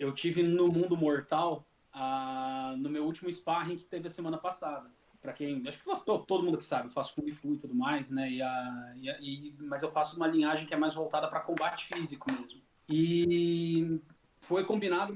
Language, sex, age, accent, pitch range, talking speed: Portuguese, male, 20-39, Brazilian, 155-215 Hz, 205 wpm